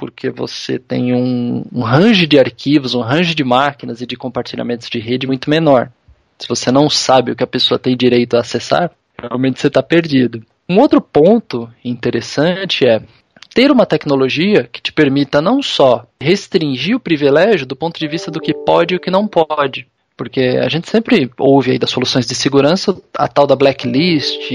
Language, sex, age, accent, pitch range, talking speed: Portuguese, male, 20-39, Brazilian, 125-170 Hz, 190 wpm